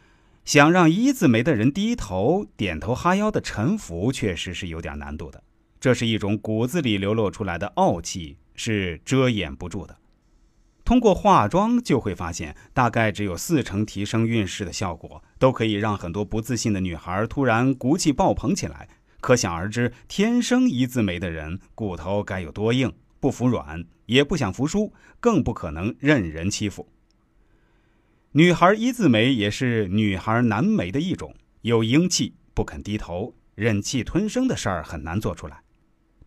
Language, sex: Chinese, male